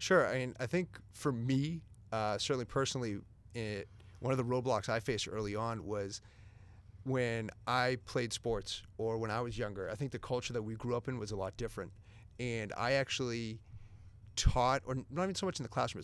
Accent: American